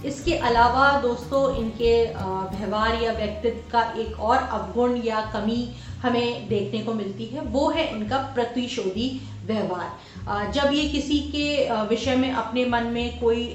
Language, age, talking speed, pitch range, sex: Hindi, 30-49, 145 wpm, 205-260 Hz, female